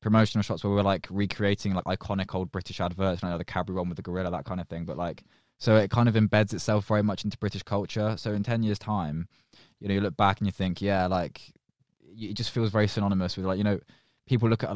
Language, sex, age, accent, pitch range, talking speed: English, male, 20-39, British, 90-105 Hz, 270 wpm